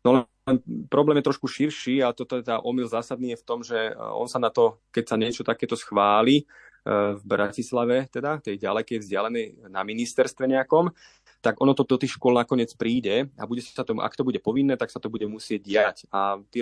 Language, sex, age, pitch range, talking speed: Slovak, male, 20-39, 105-130 Hz, 215 wpm